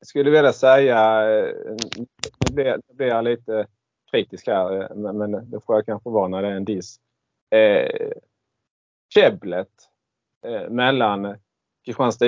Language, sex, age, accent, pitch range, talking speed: Swedish, male, 30-49, Norwegian, 100-130 Hz, 110 wpm